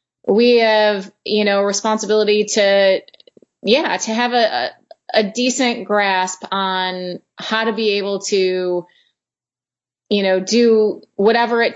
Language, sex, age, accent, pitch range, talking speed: English, female, 30-49, American, 190-220 Hz, 125 wpm